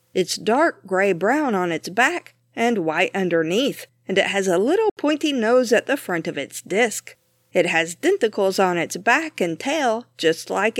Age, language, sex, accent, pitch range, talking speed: 50-69, English, female, American, 175-255 Hz, 180 wpm